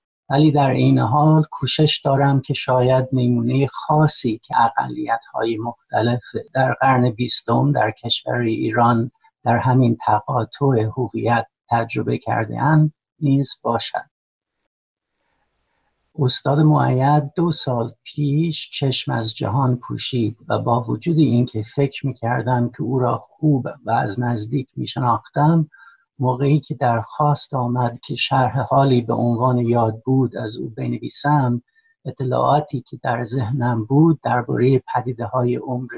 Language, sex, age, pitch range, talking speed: Persian, male, 60-79, 120-145 Hz, 120 wpm